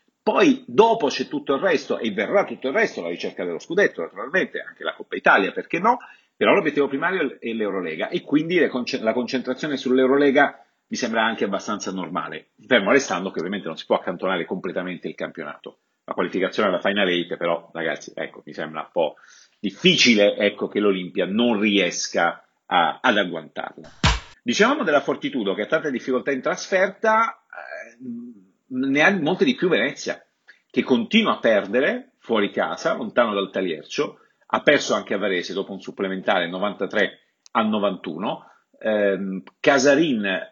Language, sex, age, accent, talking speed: Italian, male, 40-59, native, 160 wpm